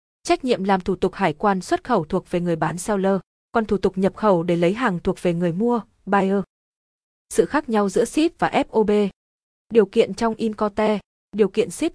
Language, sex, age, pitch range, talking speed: Vietnamese, female, 20-39, 185-230 Hz, 205 wpm